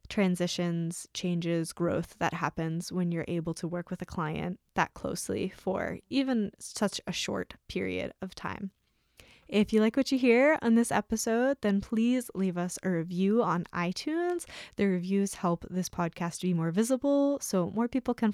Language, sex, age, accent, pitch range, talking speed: English, female, 10-29, American, 175-220 Hz, 170 wpm